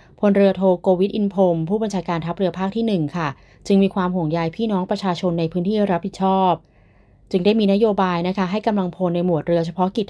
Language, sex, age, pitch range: Thai, female, 20-39, 170-195 Hz